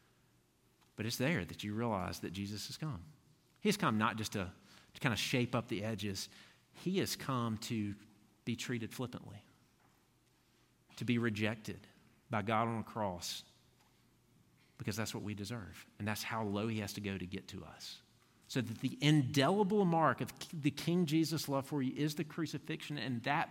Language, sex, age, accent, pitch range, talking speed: English, male, 40-59, American, 110-150 Hz, 185 wpm